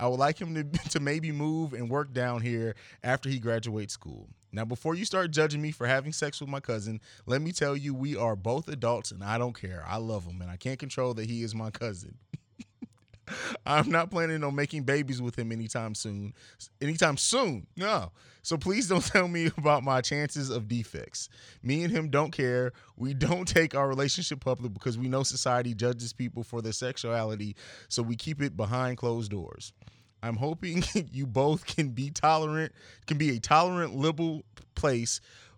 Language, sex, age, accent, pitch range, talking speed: English, male, 20-39, American, 115-155 Hz, 195 wpm